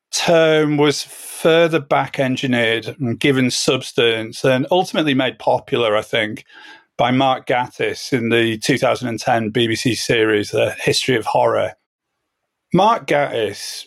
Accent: British